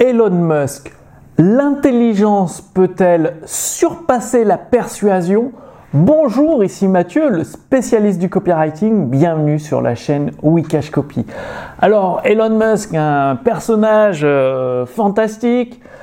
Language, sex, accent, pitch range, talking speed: French, male, French, 160-235 Hz, 105 wpm